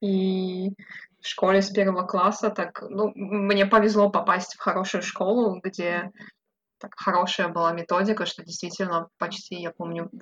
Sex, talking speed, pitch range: female, 135 wpm, 175-205 Hz